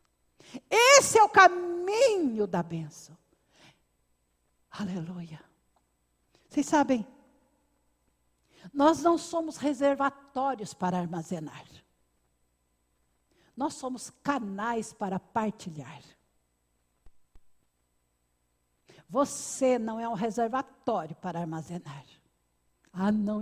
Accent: Brazilian